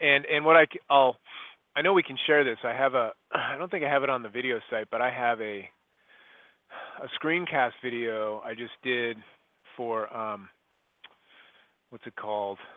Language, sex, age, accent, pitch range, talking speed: English, male, 30-49, American, 120-140 Hz, 185 wpm